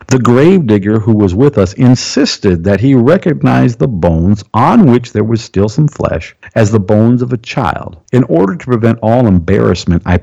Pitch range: 90-115 Hz